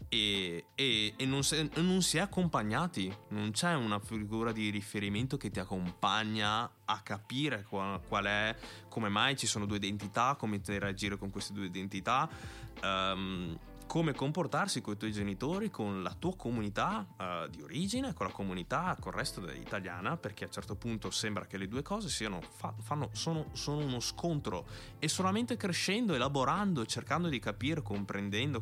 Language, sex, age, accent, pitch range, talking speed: Italian, male, 20-39, native, 100-145 Hz, 170 wpm